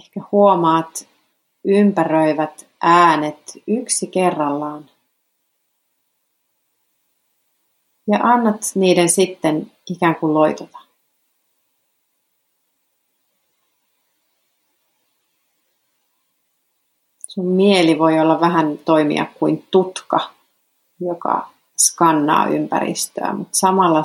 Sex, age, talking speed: female, 40-59, 65 wpm